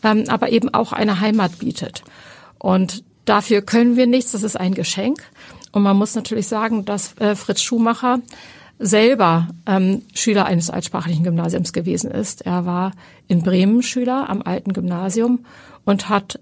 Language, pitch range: German, 195-230 Hz